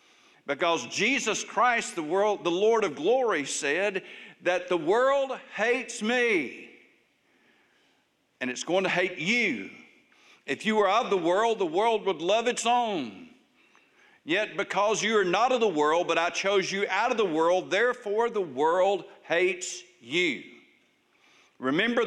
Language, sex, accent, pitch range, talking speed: English, male, American, 165-220 Hz, 150 wpm